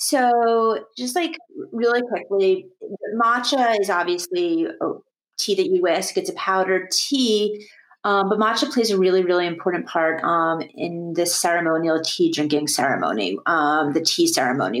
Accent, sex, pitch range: American, female, 170-235 Hz